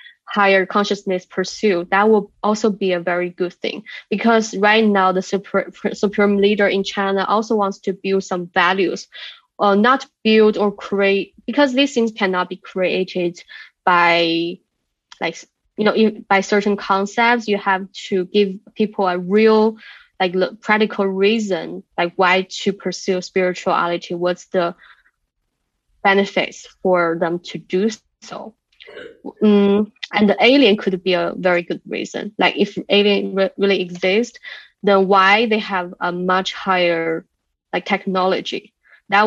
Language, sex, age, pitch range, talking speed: English, female, 20-39, 185-215 Hz, 140 wpm